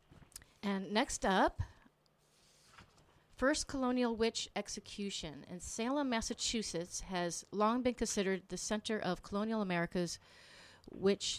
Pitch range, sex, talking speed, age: 180-225 Hz, female, 105 wpm, 40-59